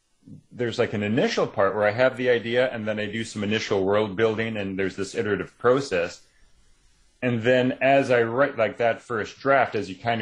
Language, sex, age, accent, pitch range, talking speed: English, male, 30-49, American, 90-110 Hz, 205 wpm